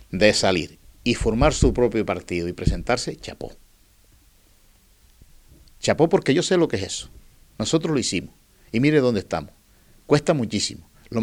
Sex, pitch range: male, 95-125 Hz